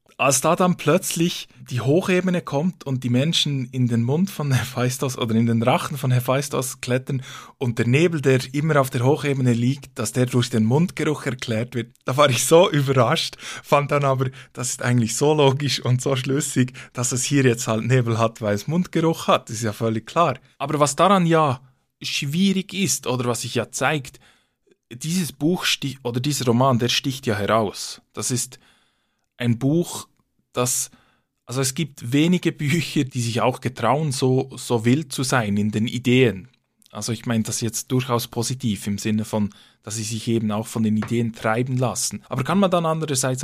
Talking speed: 190 wpm